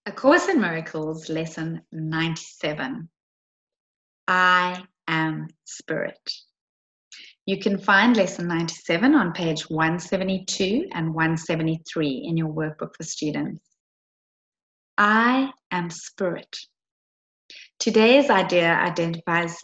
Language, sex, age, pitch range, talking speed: English, female, 30-49, 165-225 Hz, 90 wpm